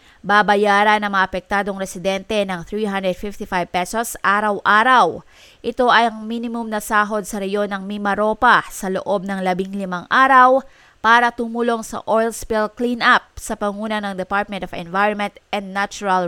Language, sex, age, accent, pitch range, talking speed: English, female, 20-39, Filipino, 200-230 Hz, 145 wpm